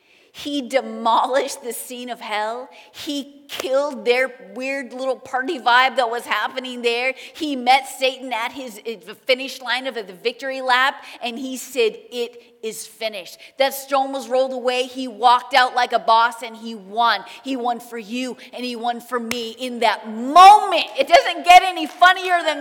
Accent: American